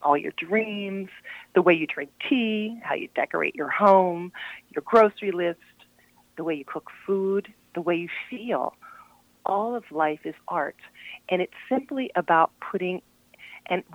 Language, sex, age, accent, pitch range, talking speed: English, female, 40-59, American, 155-185 Hz, 155 wpm